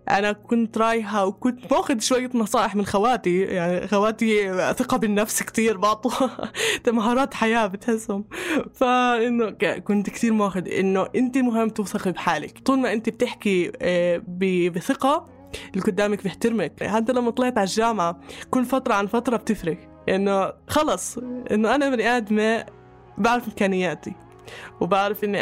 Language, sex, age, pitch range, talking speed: Arabic, female, 20-39, 195-240 Hz, 130 wpm